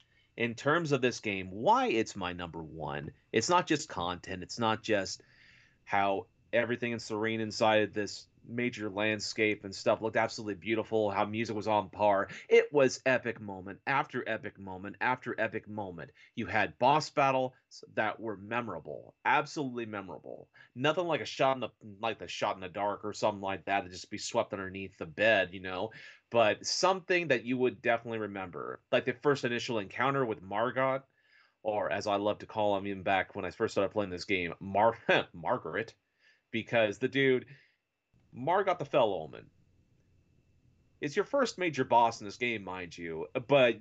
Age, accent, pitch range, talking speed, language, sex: 30-49, American, 105-130 Hz, 175 wpm, English, male